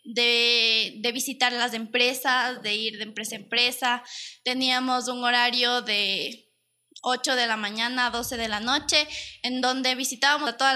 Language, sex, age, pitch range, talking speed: Spanish, female, 20-39, 225-275 Hz, 160 wpm